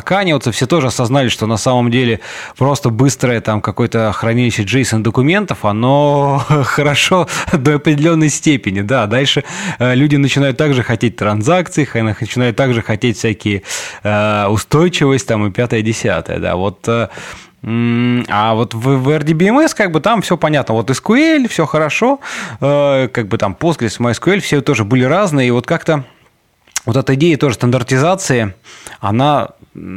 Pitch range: 105-140 Hz